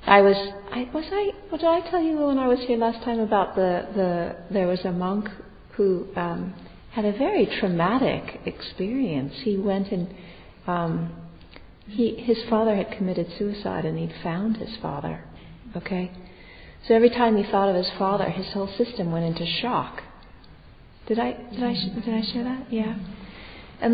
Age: 50-69